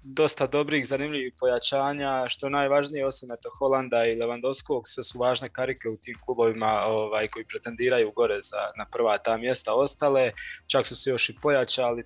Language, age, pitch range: Croatian, 20-39, 115-130 Hz